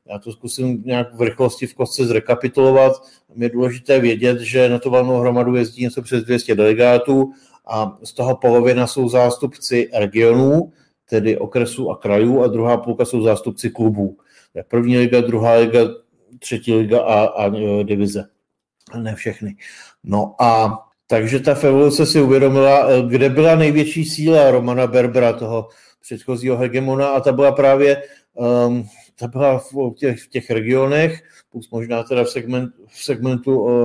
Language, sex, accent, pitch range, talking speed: Czech, male, native, 120-135 Hz, 150 wpm